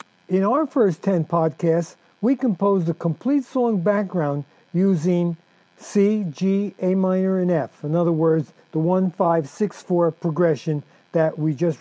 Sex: male